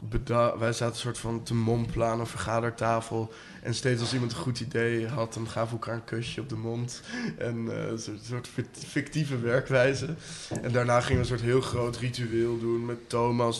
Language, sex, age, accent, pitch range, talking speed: Dutch, male, 20-39, Dutch, 115-130 Hz, 200 wpm